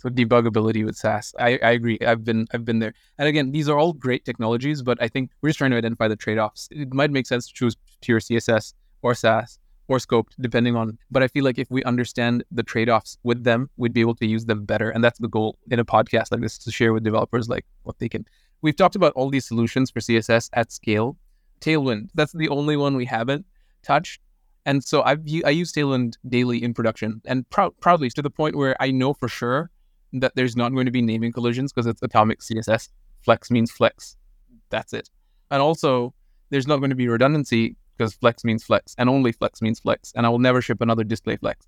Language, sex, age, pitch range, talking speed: English, male, 20-39, 115-130 Hz, 230 wpm